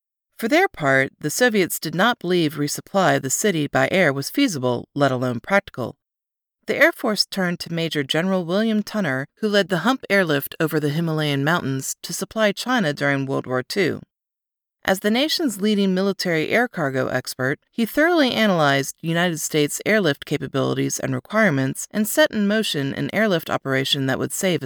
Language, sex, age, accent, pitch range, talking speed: English, female, 30-49, American, 145-210 Hz, 170 wpm